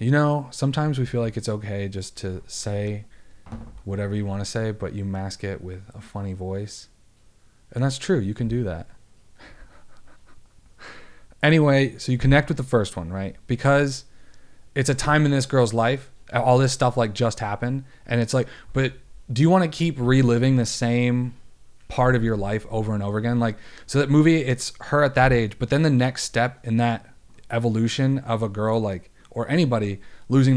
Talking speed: 190 wpm